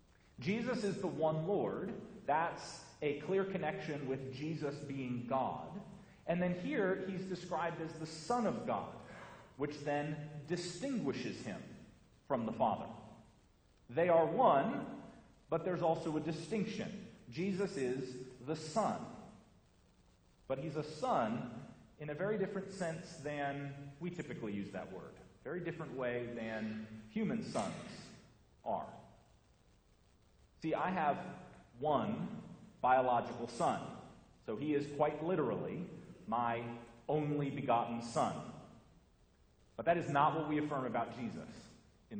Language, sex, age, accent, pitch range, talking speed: English, male, 40-59, American, 125-180 Hz, 125 wpm